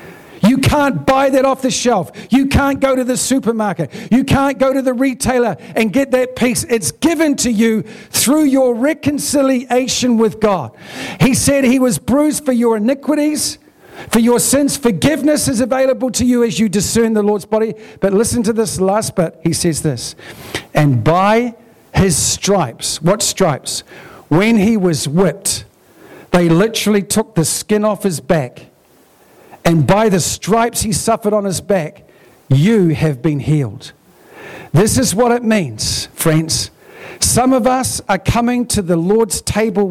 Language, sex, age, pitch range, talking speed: English, male, 50-69, 190-250 Hz, 165 wpm